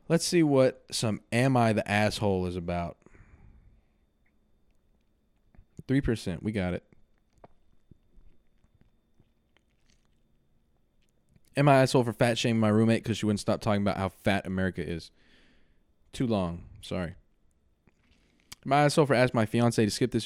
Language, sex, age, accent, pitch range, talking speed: English, male, 20-39, American, 105-155 Hz, 135 wpm